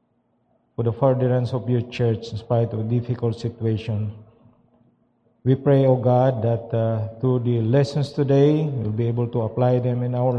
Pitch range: 115-130 Hz